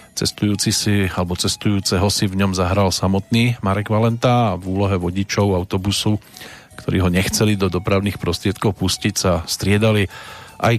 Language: Slovak